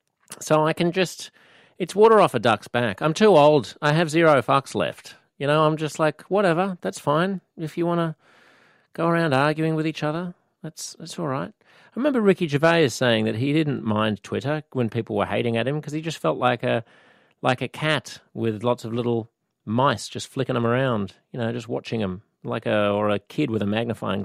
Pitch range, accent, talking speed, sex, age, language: 110-155 Hz, Australian, 215 wpm, male, 40-59, English